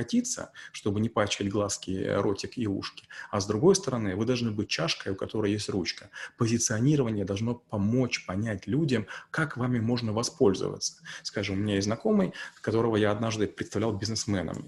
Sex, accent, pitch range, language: male, native, 105-130 Hz, Russian